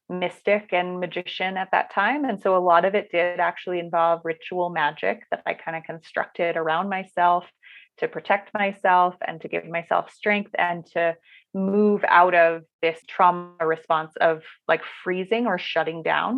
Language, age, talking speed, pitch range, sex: English, 20-39, 170 wpm, 165-195 Hz, female